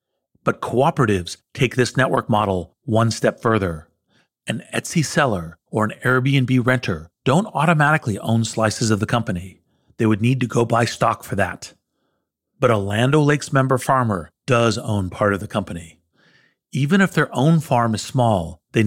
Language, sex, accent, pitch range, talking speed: English, male, American, 100-130 Hz, 165 wpm